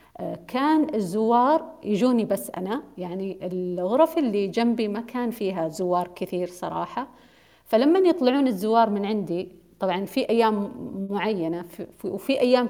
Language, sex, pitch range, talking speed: Arabic, female, 180-240 Hz, 130 wpm